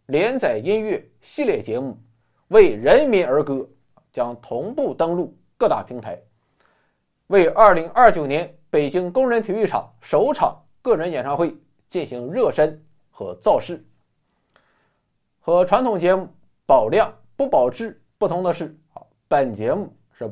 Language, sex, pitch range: Chinese, male, 120-185 Hz